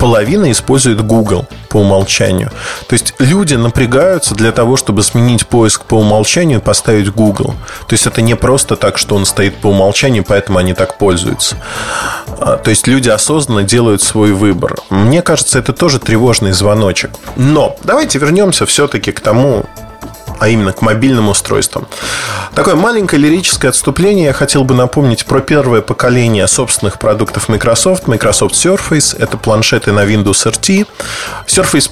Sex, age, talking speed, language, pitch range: male, 20-39, 150 wpm, Russian, 110-145 Hz